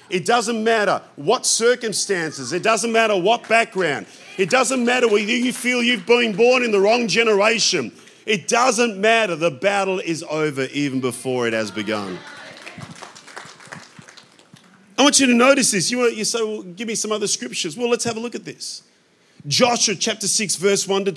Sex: male